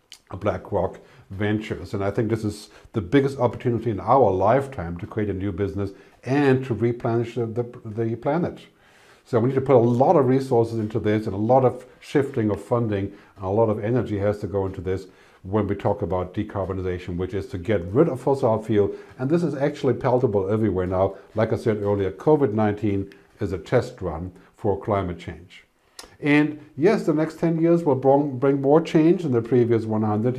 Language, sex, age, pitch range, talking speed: English, male, 60-79, 100-140 Hz, 195 wpm